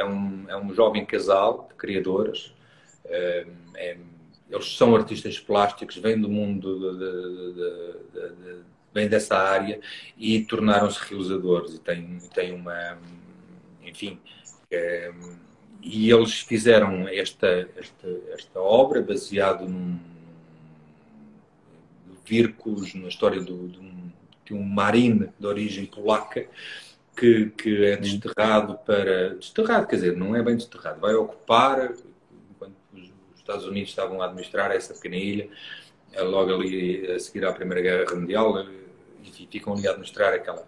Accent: Portuguese